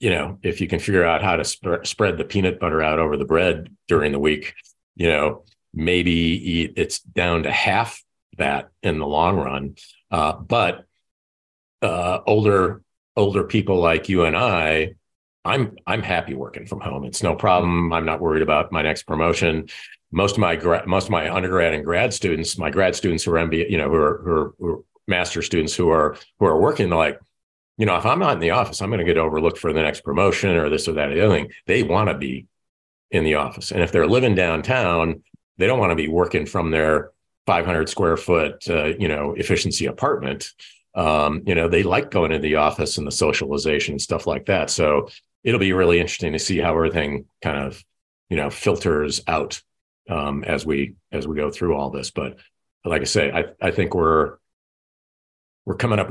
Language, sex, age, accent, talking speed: English, male, 50-69, American, 210 wpm